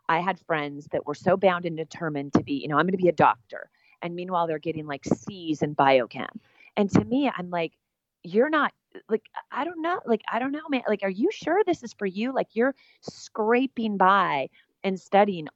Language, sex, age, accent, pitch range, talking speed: English, female, 30-49, American, 150-195 Hz, 220 wpm